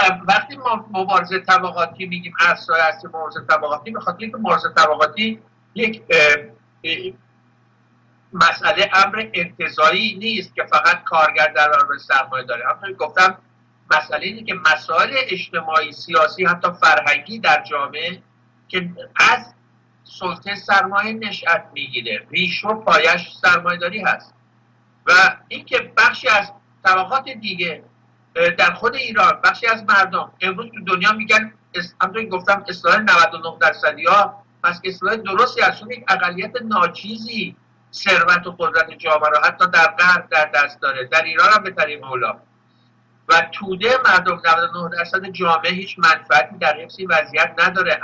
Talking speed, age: 125 wpm, 50-69